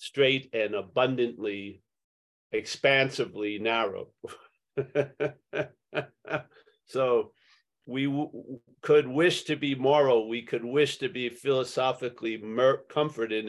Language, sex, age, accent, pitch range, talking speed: English, male, 50-69, American, 120-145 Hz, 85 wpm